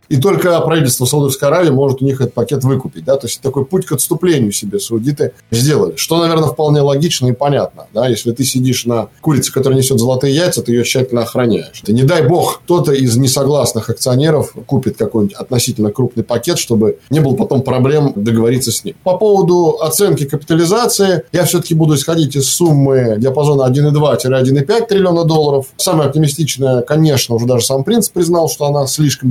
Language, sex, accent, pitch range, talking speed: Russian, male, native, 130-165 Hz, 180 wpm